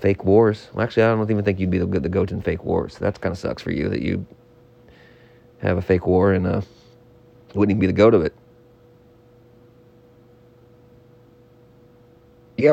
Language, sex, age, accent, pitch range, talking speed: English, male, 40-59, American, 120-125 Hz, 180 wpm